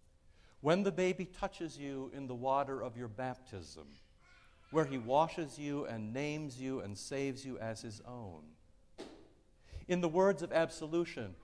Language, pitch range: English, 115-180 Hz